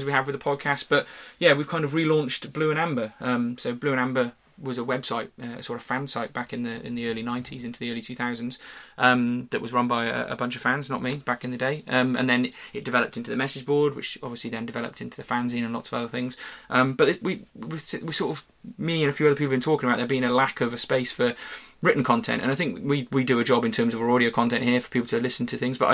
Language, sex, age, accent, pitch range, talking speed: English, male, 20-39, British, 120-135 Hz, 290 wpm